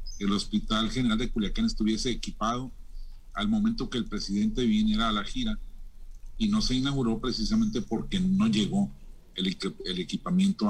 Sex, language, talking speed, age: male, Spanish, 150 wpm, 40-59